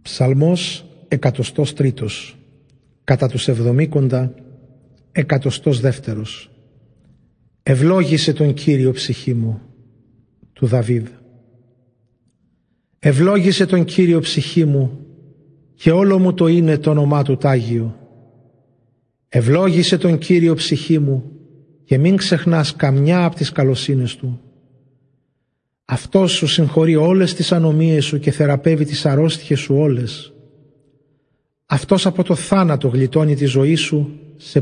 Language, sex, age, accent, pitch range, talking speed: Greek, male, 40-59, native, 130-155 Hz, 110 wpm